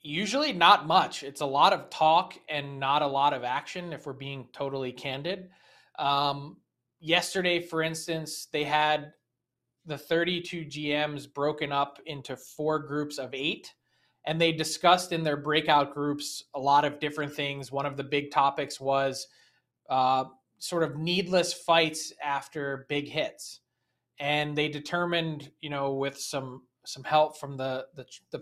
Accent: American